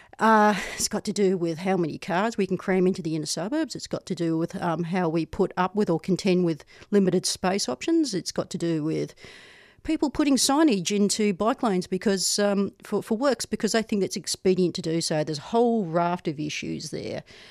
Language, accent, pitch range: English, Australian, 180-205 Hz